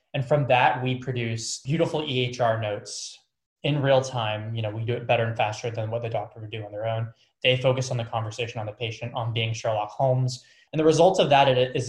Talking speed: 230 wpm